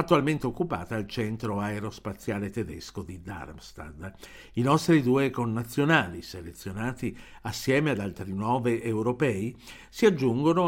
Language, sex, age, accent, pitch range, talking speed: Italian, male, 60-79, native, 100-135 Hz, 110 wpm